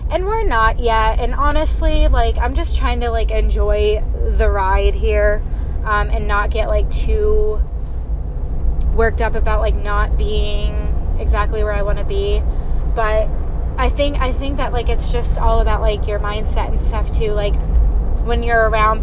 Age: 10-29